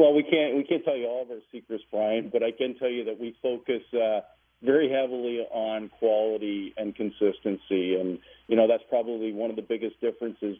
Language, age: English, 50-69